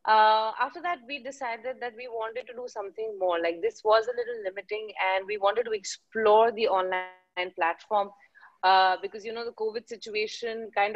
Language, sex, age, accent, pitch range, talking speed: English, female, 30-49, Indian, 190-250 Hz, 185 wpm